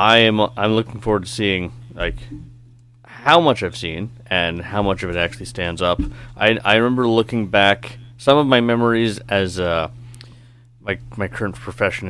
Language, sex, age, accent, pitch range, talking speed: English, male, 30-49, American, 95-120 Hz, 175 wpm